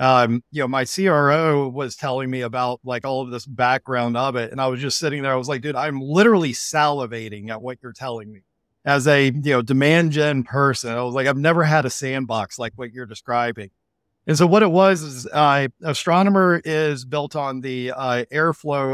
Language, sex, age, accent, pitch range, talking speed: English, male, 40-59, American, 125-150 Hz, 210 wpm